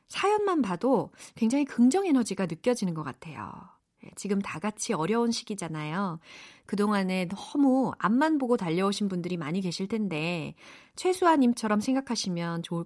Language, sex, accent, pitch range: Korean, female, native, 180-280 Hz